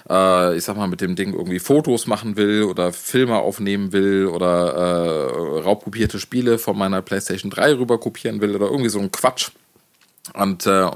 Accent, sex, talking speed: German, male, 175 wpm